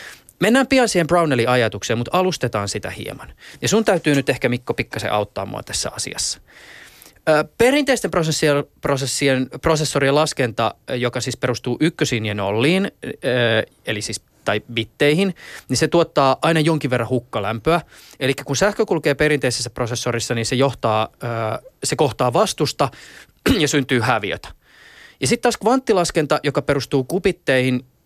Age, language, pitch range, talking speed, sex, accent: 20-39, Finnish, 115-155 Hz, 135 wpm, male, native